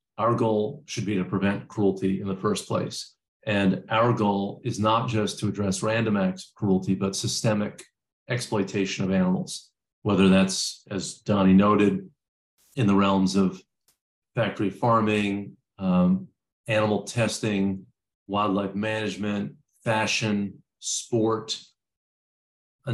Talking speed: 125 wpm